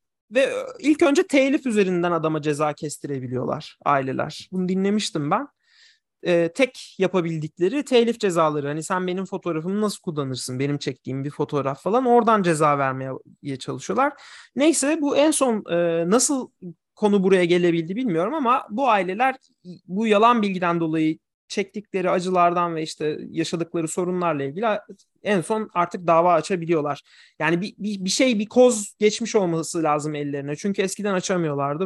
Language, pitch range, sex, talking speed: Turkish, 155-225 Hz, male, 135 wpm